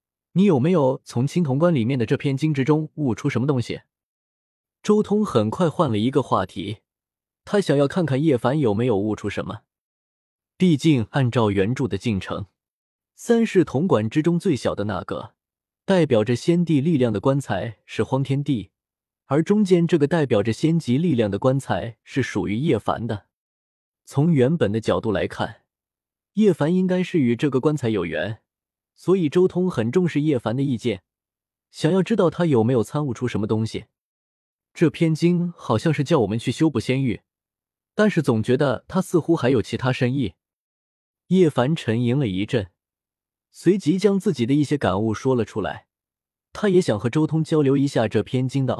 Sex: male